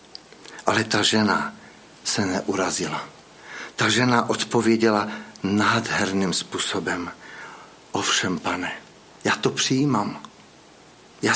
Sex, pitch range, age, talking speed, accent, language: male, 110-155 Hz, 60-79, 85 wpm, native, Czech